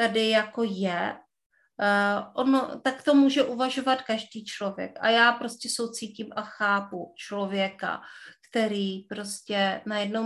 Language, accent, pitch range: Czech, native, 200-230 Hz